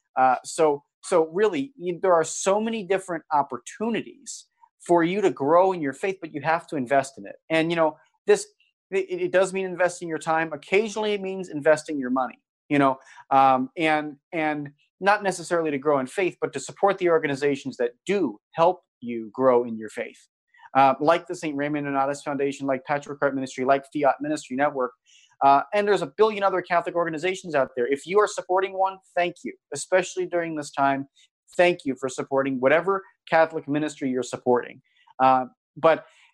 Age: 30-49